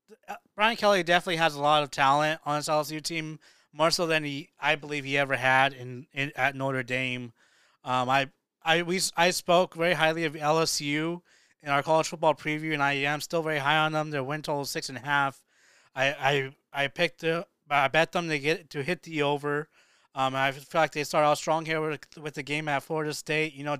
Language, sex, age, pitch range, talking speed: English, male, 20-39, 140-160 Hz, 225 wpm